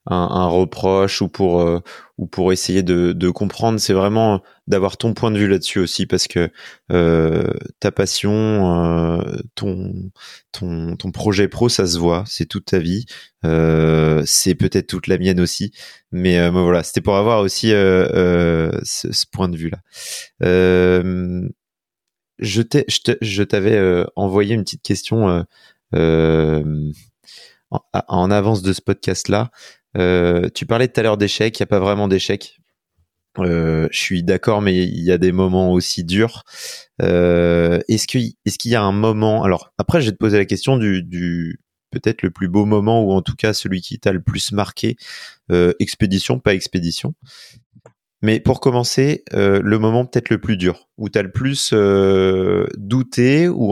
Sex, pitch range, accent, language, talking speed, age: male, 90-110 Hz, French, French, 180 wpm, 30-49